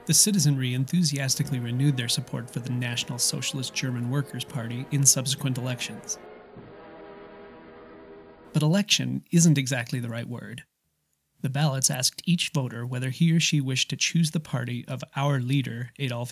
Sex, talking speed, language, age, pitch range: male, 150 wpm, English, 30-49, 125-145 Hz